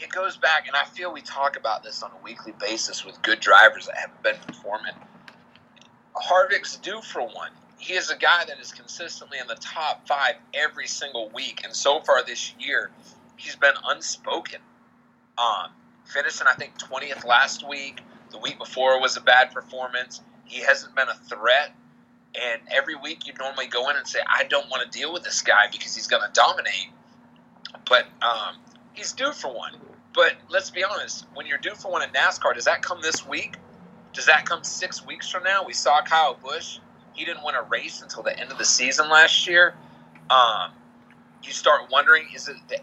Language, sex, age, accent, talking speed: English, male, 30-49, American, 200 wpm